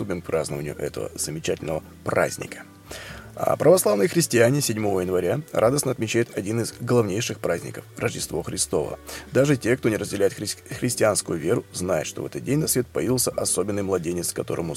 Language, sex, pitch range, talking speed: Russian, male, 110-135 Hz, 150 wpm